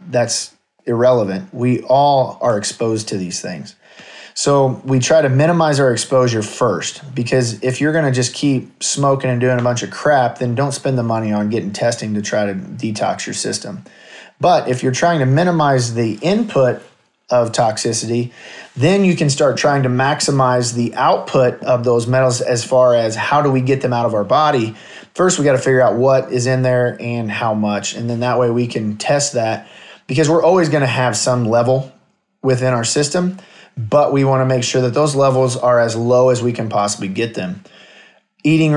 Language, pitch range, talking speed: English, 120-145 Hz, 200 wpm